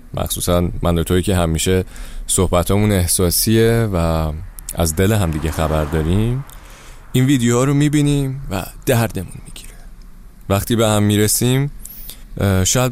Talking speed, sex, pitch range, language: 120 wpm, male, 90-130 Hz, Persian